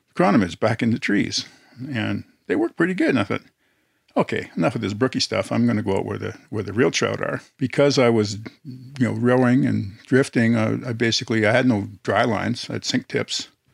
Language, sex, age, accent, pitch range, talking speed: English, male, 50-69, American, 115-130 Hz, 225 wpm